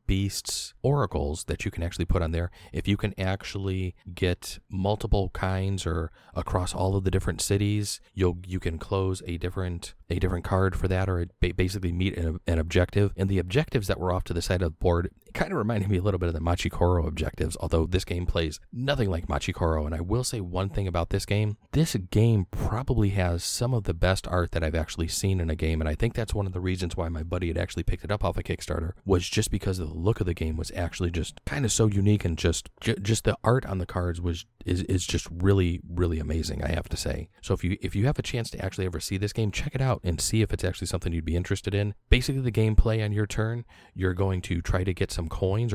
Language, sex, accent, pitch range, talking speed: English, male, American, 85-105 Hz, 255 wpm